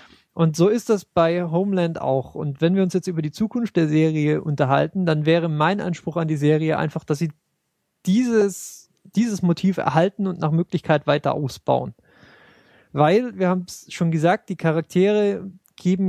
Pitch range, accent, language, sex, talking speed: 155-185 Hz, German, German, male, 170 wpm